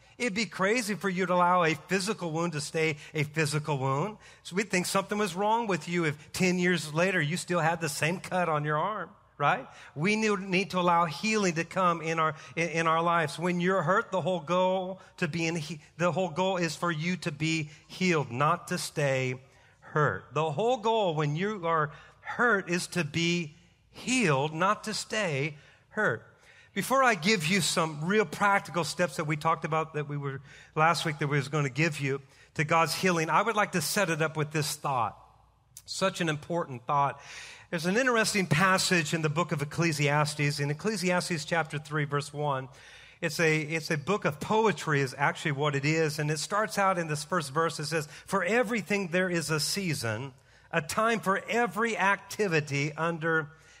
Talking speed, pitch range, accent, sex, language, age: 195 wpm, 150-185 Hz, American, male, English, 40-59